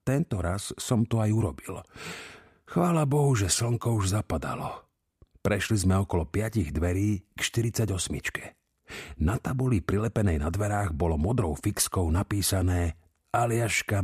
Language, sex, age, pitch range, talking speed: Slovak, male, 50-69, 85-125 Hz, 125 wpm